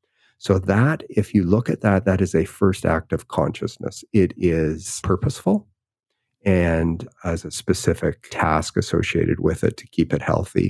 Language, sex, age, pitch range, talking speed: English, male, 40-59, 90-110 Hz, 165 wpm